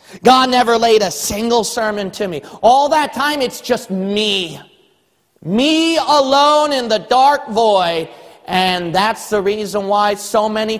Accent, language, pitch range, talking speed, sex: American, English, 185-255 Hz, 150 wpm, male